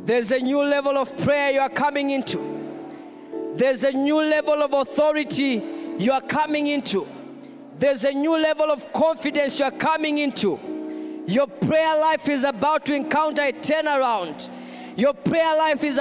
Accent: South African